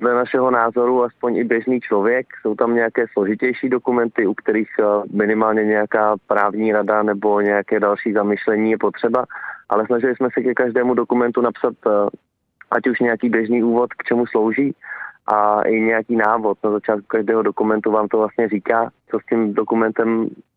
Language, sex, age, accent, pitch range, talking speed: Czech, male, 20-39, native, 105-120 Hz, 165 wpm